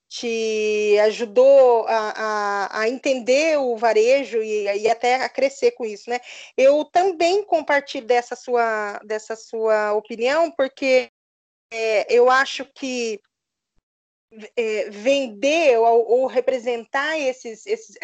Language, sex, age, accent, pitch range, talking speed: Portuguese, female, 20-39, Brazilian, 230-270 Hz, 125 wpm